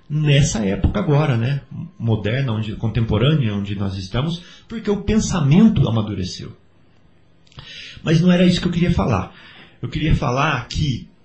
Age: 30-49